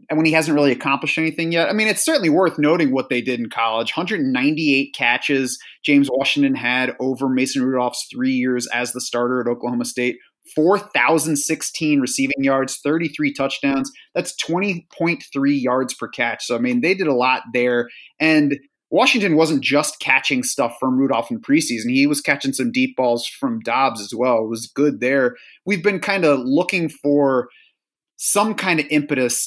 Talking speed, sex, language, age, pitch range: 175 wpm, male, English, 30-49, 125-155 Hz